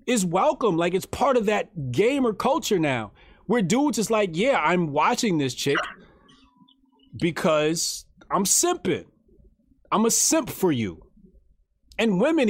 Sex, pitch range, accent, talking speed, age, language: male, 170-270 Hz, American, 140 wpm, 30-49, English